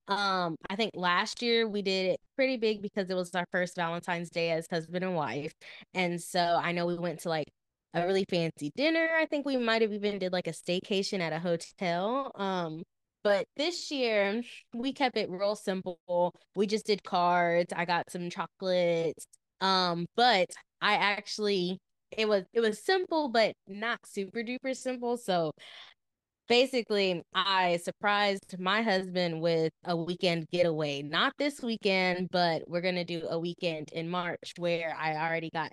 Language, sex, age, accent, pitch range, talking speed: English, female, 20-39, American, 170-220 Hz, 170 wpm